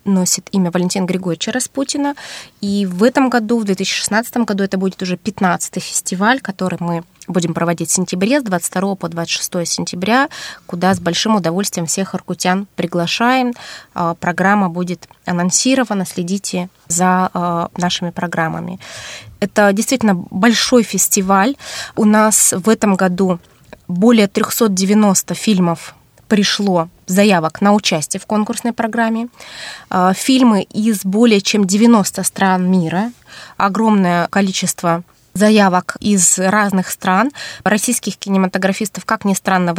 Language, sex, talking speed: Russian, female, 120 wpm